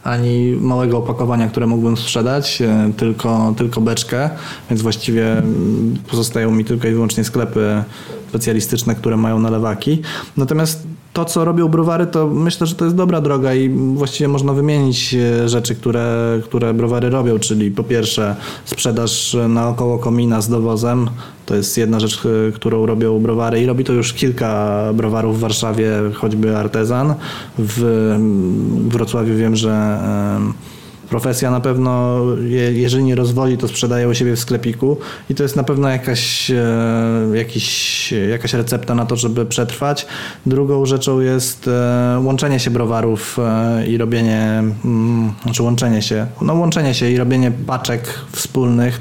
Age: 20-39